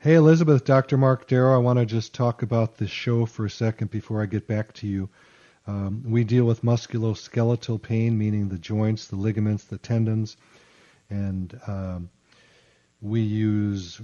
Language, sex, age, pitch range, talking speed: English, male, 50-69, 100-115 Hz, 165 wpm